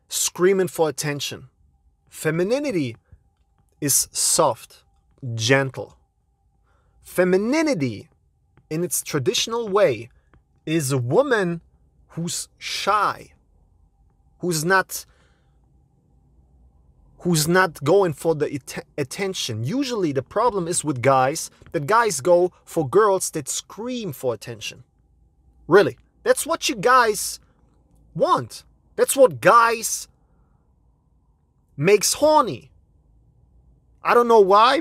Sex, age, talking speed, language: male, 30-49, 95 wpm, English